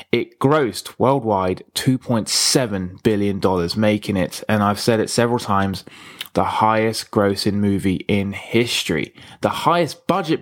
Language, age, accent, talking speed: English, 20-39, British, 125 wpm